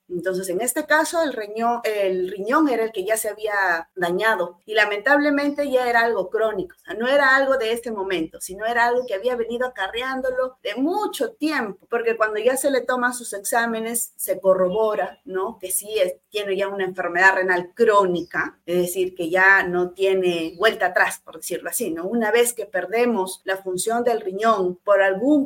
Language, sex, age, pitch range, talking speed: Spanish, female, 30-49, 190-250 Hz, 190 wpm